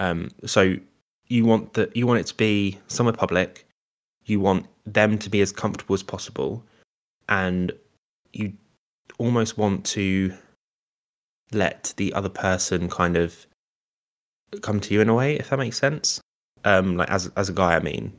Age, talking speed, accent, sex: 10-29, 165 wpm, British, male